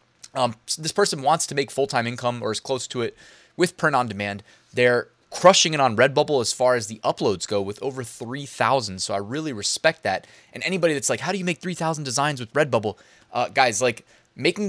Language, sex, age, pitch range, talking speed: English, male, 20-39, 115-150 Hz, 215 wpm